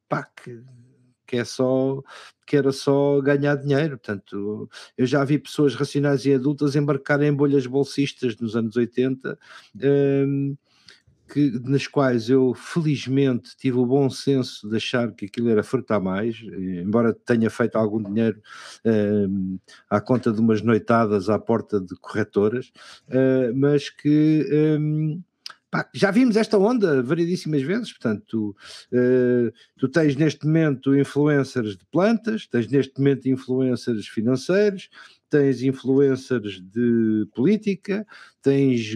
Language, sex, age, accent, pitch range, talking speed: Portuguese, male, 50-69, Portuguese, 120-150 Hz, 135 wpm